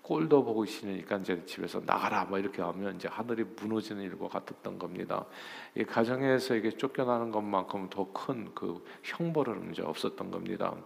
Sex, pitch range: male, 95-115 Hz